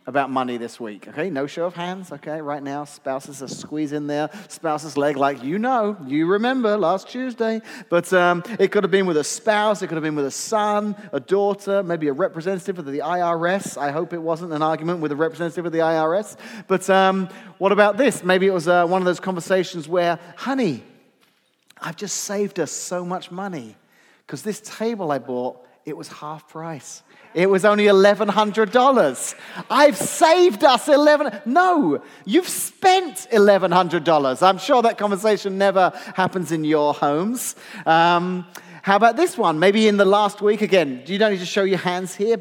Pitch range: 165-210 Hz